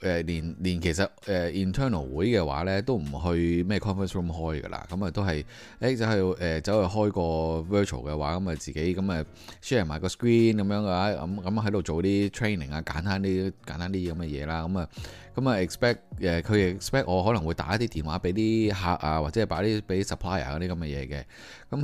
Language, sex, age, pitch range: Chinese, male, 20-39, 85-110 Hz